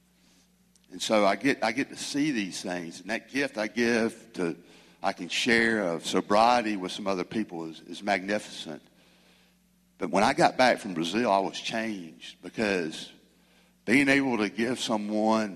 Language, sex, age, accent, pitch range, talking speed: English, male, 60-79, American, 95-130 Hz, 170 wpm